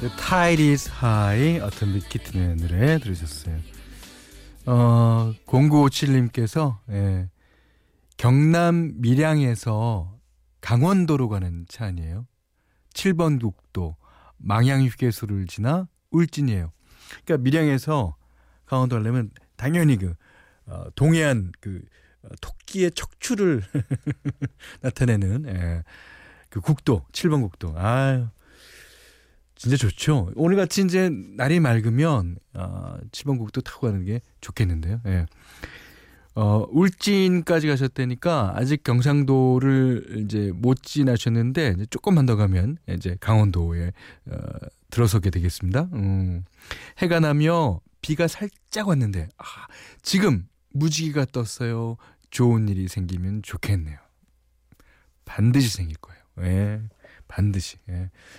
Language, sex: Korean, male